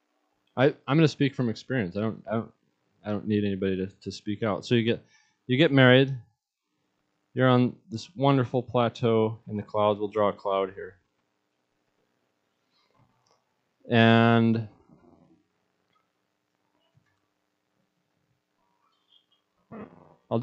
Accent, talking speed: American, 115 wpm